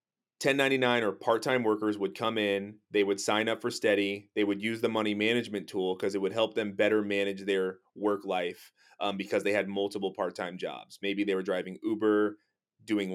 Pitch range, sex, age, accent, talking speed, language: 100-120 Hz, male, 30-49, American, 195 wpm, English